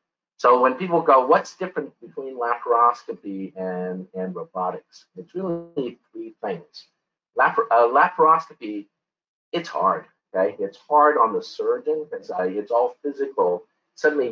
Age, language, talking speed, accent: 50-69, English, 125 wpm, American